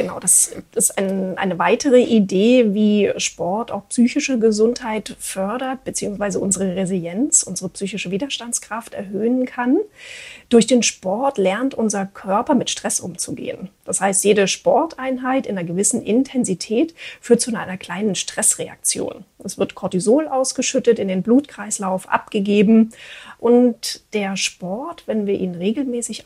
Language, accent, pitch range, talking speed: German, German, 190-245 Hz, 130 wpm